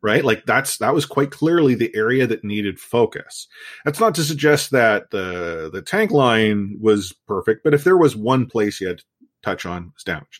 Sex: male